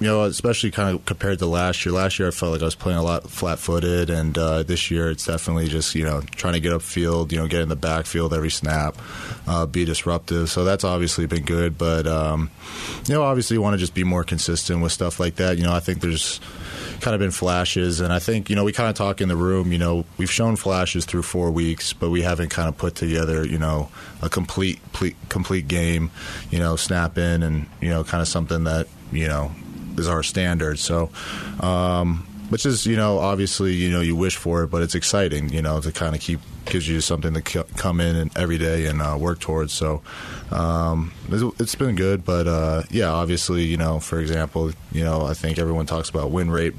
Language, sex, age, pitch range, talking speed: English, male, 30-49, 80-90 Hz, 235 wpm